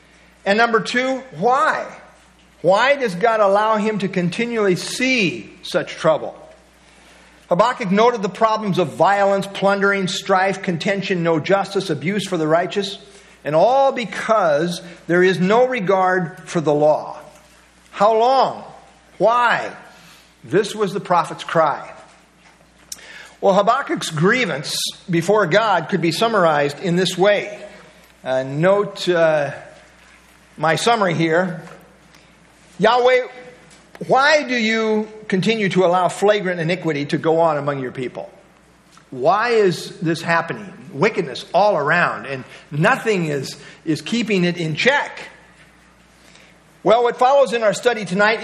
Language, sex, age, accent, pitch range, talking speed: English, male, 50-69, American, 170-220 Hz, 125 wpm